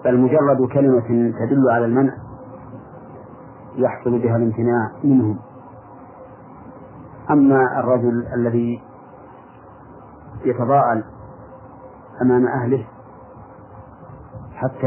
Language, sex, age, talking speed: Arabic, male, 40-59, 70 wpm